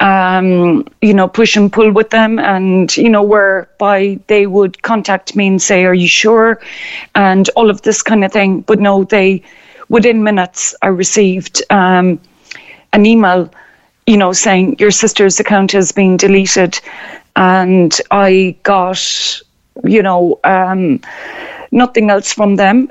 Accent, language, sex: Irish, English, female